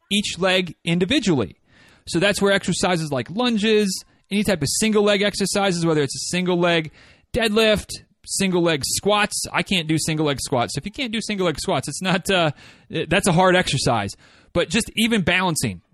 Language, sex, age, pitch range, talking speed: English, male, 30-49, 155-205 Hz, 180 wpm